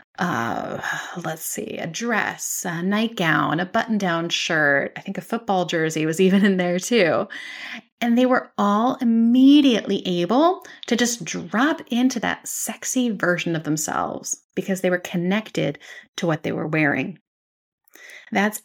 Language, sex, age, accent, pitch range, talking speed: English, female, 30-49, American, 175-245 Hz, 145 wpm